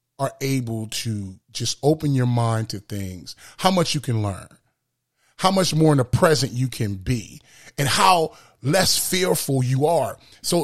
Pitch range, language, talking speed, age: 120-155 Hz, English, 170 wpm, 30-49